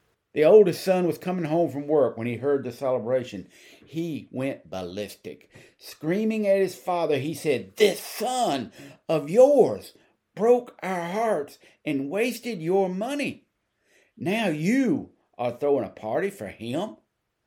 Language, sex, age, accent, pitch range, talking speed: English, male, 50-69, American, 120-190 Hz, 140 wpm